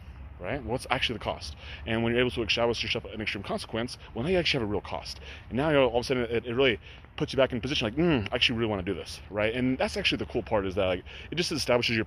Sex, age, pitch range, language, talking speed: male, 30-49, 100-130 Hz, English, 290 wpm